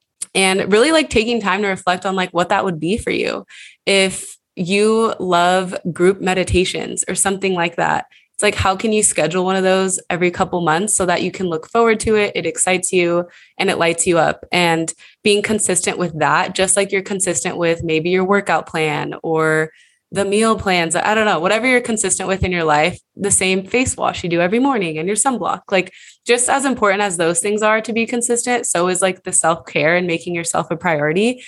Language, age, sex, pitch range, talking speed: English, 20-39, female, 170-205 Hz, 215 wpm